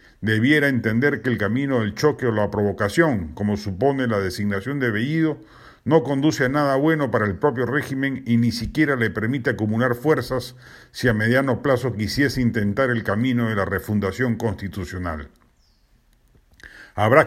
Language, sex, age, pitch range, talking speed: Spanish, male, 50-69, 110-140 Hz, 155 wpm